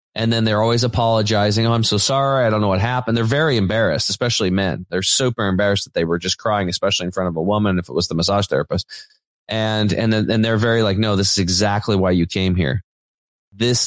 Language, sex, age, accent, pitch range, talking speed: English, male, 30-49, American, 100-120 Hz, 235 wpm